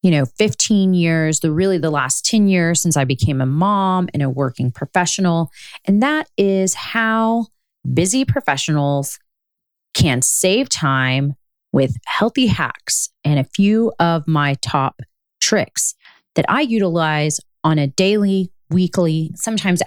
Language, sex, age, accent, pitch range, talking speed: English, female, 30-49, American, 155-205 Hz, 140 wpm